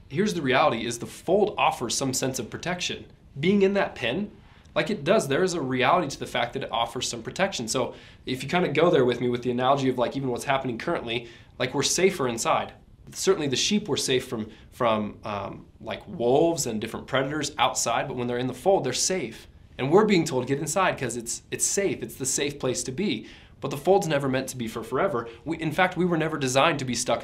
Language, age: English, 20-39